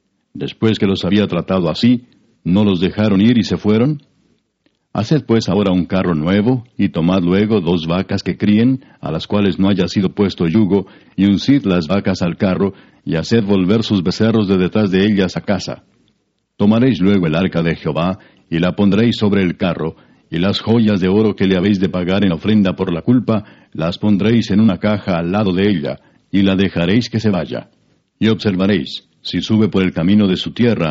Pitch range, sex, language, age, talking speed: 90-105 Hz, male, Spanish, 60-79, 200 wpm